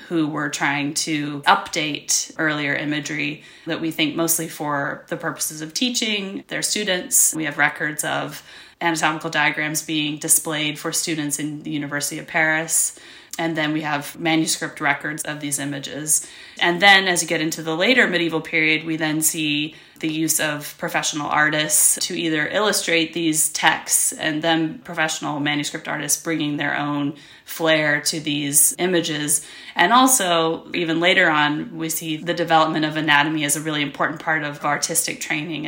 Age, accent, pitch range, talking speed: 20-39, American, 150-165 Hz, 160 wpm